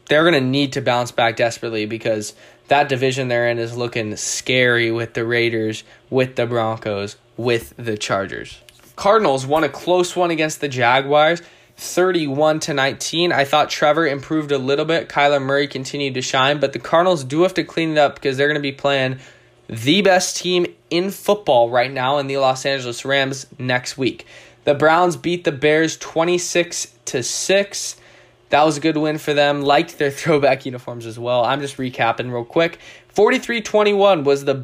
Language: English